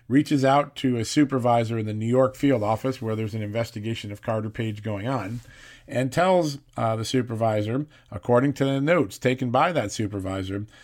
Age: 40-59